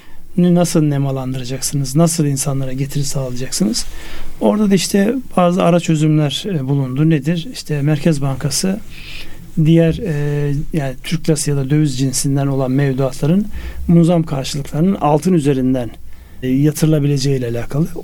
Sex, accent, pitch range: male, native, 135-165 Hz